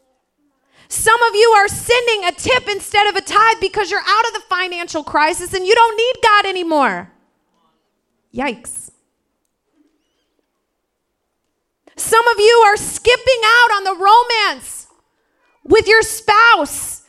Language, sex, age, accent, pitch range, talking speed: English, female, 30-49, American, 305-420 Hz, 130 wpm